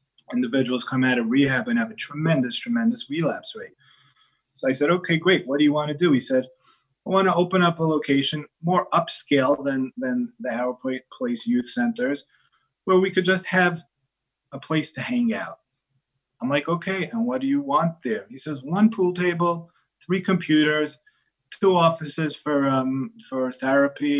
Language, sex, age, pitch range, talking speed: English, male, 30-49, 135-220 Hz, 180 wpm